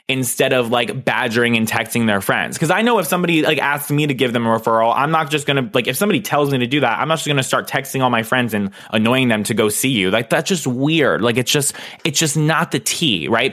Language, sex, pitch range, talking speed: English, male, 115-145 Hz, 285 wpm